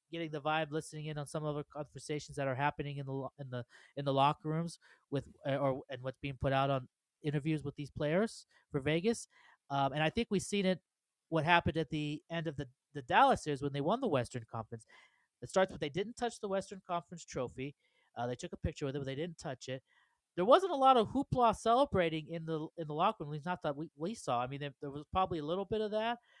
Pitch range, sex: 140-185 Hz, male